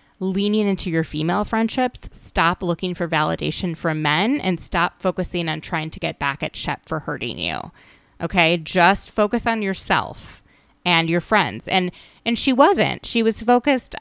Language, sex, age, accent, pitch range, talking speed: English, female, 20-39, American, 160-200 Hz, 165 wpm